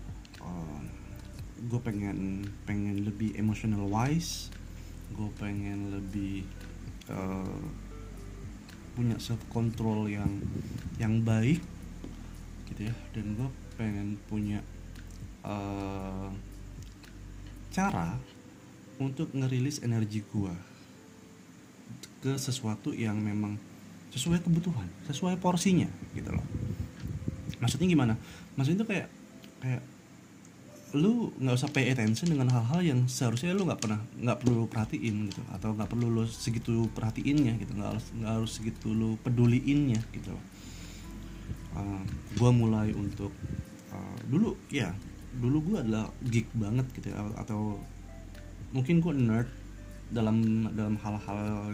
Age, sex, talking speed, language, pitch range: 20-39, male, 110 wpm, Indonesian, 100-120 Hz